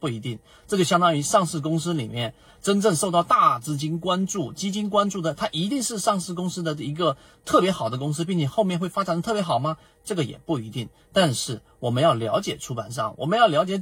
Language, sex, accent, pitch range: Chinese, male, native, 125-175 Hz